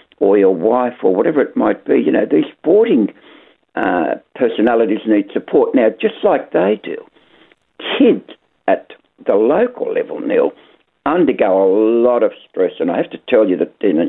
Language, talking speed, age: English, 175 wpm, 60-79